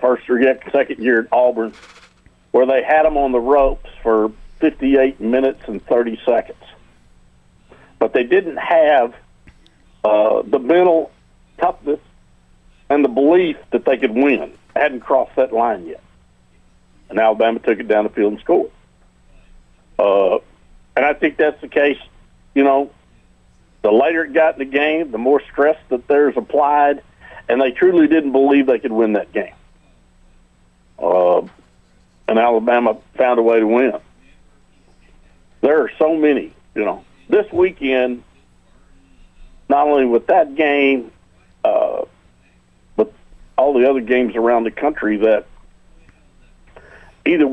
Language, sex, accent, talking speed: English, male, American, 140 wpm